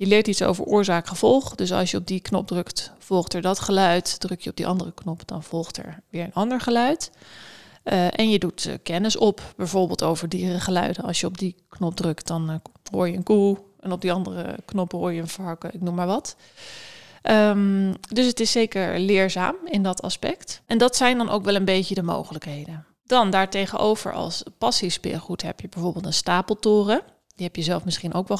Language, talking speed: Dutch, 210 wpm